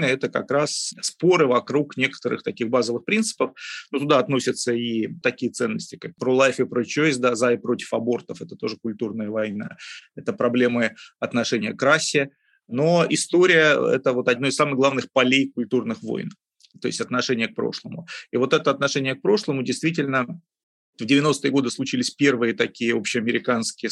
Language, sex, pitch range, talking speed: Russian, male, 120-145 Hz, 155 wpm